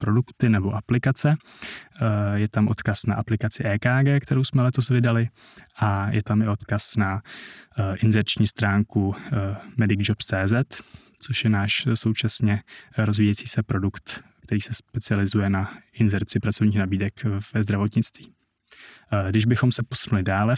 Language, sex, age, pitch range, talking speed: Czech, male, 20-39, 105-120 Hz, 125 wpm